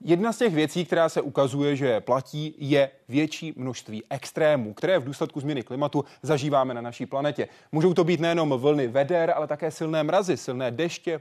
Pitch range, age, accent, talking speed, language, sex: 135-190 Hz, 30-49, native, 180 wpm, Czech, male